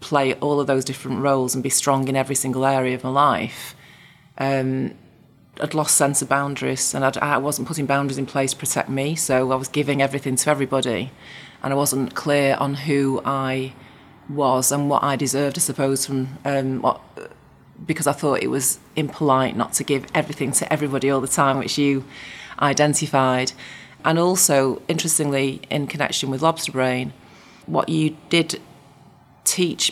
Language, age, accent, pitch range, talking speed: English, 30-49, British, 135-150 Hz, 175 wpm